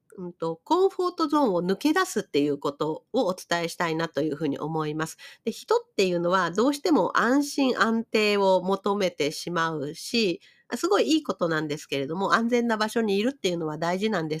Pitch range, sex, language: 170-265 Hz, female, Japanese